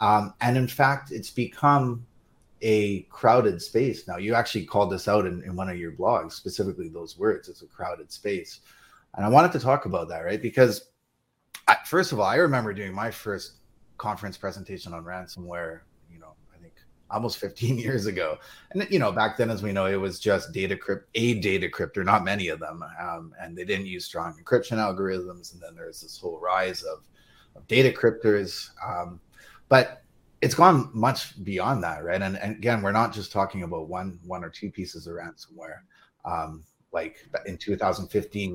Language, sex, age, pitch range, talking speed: English, male, 30-49, 90-125 Hz, 190 wpm